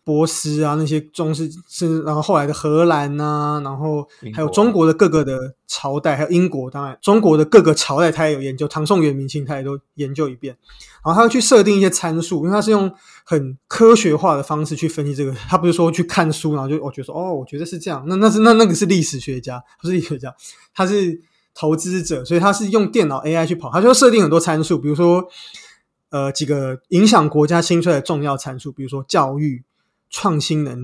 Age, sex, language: 20-39, male, Chinese